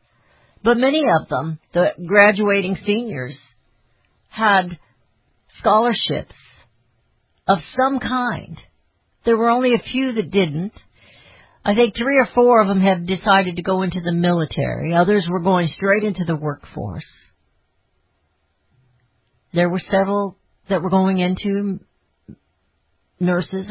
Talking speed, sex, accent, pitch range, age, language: 120 wpm, female, American, 125-195 Hz, 60-79, English